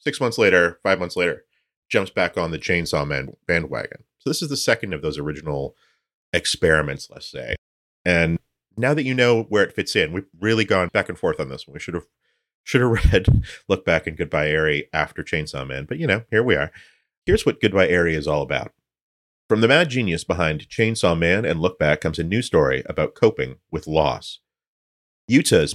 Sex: male